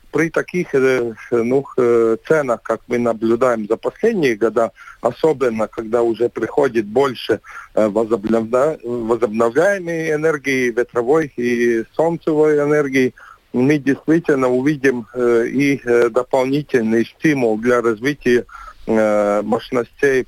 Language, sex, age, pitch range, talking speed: Russian, male, 40-59, 115-145 Hz, 90 wpm